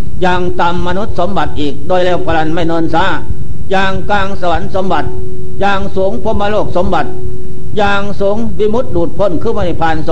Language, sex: Thai, male